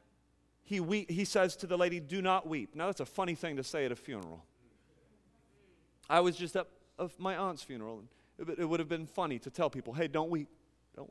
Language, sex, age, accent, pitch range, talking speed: English, male, 30-49, American, 130-210 Hz, 215 wpm